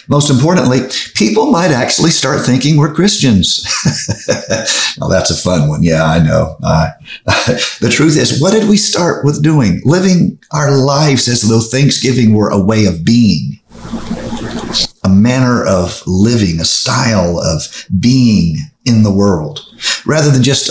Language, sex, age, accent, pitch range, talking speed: English, male, 50-69, American, 100-135 Hz, 150 wpm